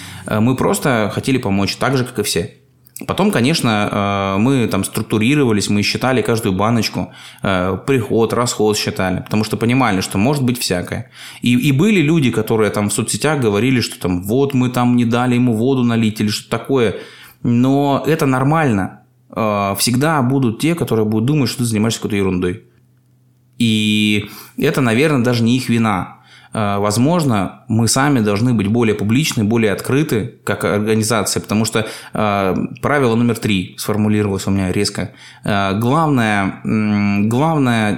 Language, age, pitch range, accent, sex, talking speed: Russian, 20-39, 105-125 Hz, native, male, 150 wpm